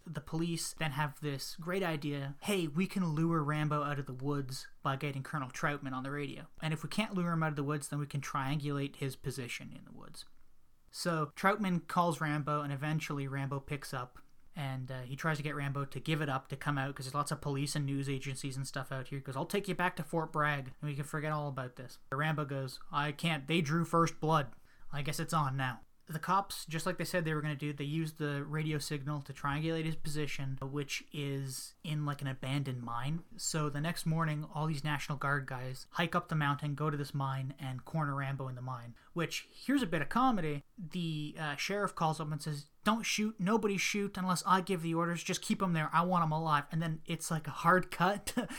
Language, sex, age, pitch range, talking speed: English, male, 20-39, 140-170 Hz, 240 wpm